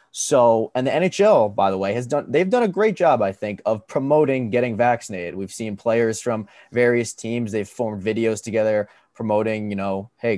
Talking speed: 195 wpm